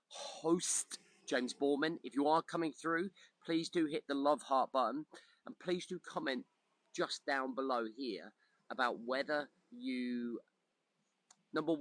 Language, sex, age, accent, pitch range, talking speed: English, male, 30-49, British, 110-155 Hz, 135 wpm